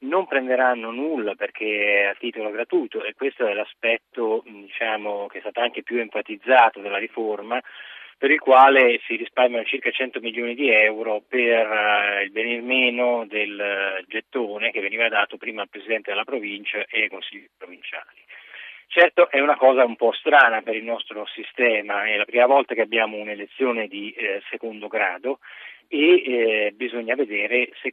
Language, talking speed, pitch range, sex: Italian, 165 wpm, 110-140 Hz, male